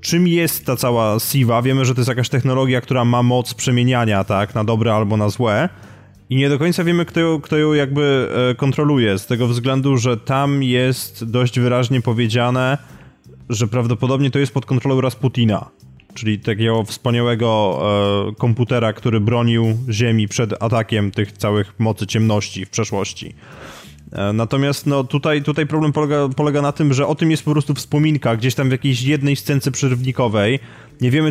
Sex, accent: male, native